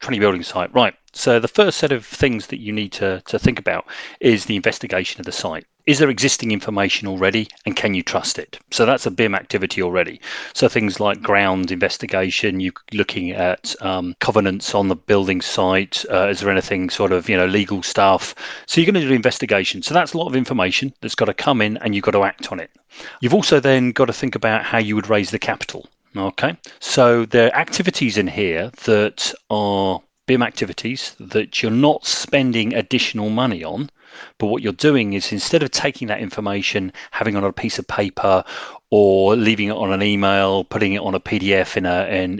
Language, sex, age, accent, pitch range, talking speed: English, male, 40-59, British, 95-125 Hz, 210 wpm